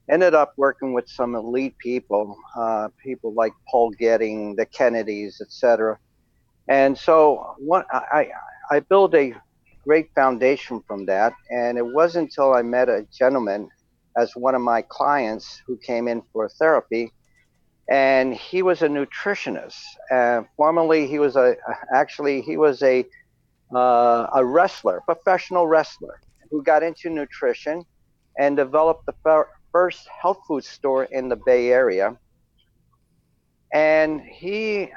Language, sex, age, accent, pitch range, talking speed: English, male, 60-79, American, 120-155 Hz, 140 wpm